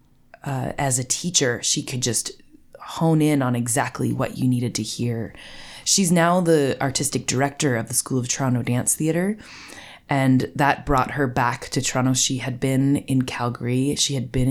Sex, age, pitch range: female, 20-39, 125-145 Hz